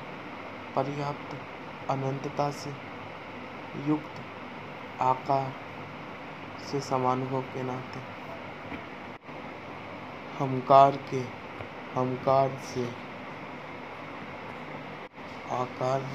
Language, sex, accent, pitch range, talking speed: Hindi, male, native, 125-140 Hz, 50 wpm